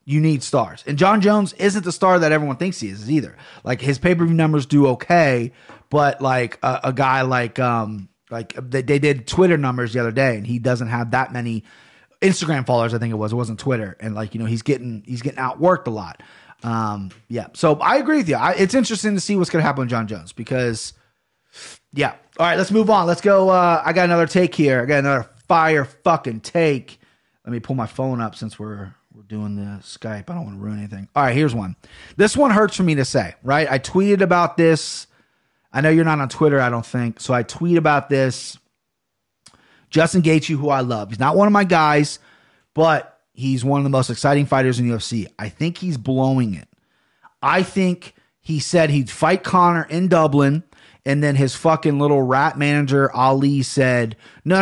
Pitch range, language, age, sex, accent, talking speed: 120-165 Hz, English, 30-49, male, American, 220 wpm